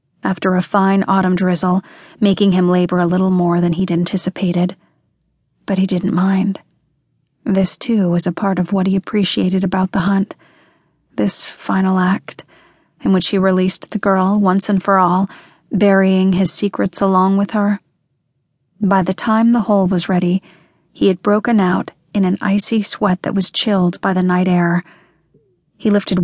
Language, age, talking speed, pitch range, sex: English, 30-49, 165 wpm, 180-200 Hz, female